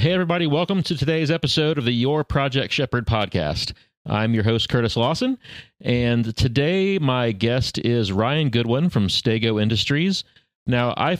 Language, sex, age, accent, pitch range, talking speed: English, male, 30-49, American, 95-115 Hz, 155 wpm